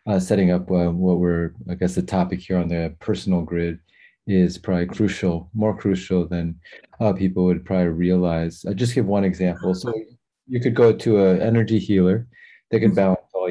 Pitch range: 90-100 Hz